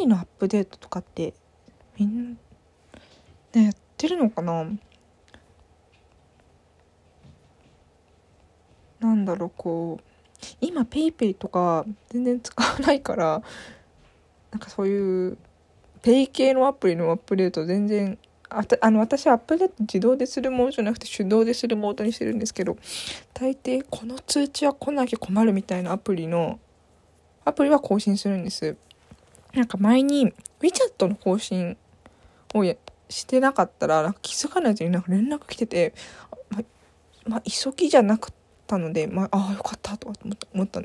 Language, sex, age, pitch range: Japanese, female, 20-39, 170-250 Hz